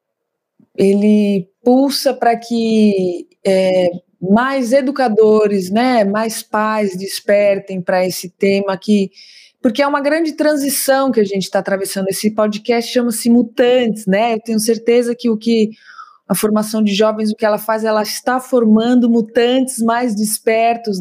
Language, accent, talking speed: Portuguese, Brazilian, 145 wpm